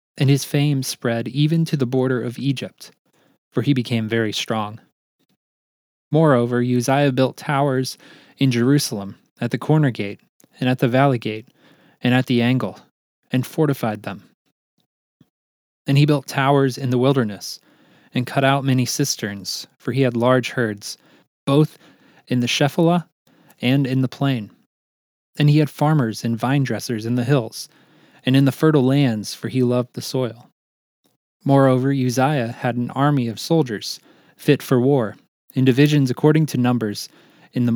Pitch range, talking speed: 115-140 Hz, 155 wpm